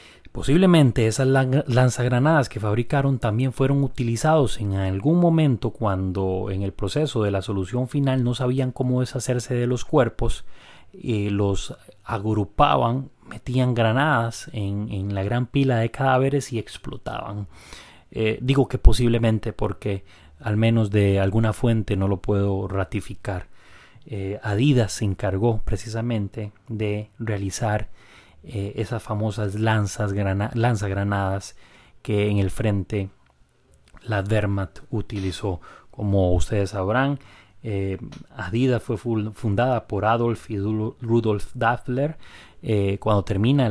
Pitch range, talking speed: 100-125 Hz, 120 wpm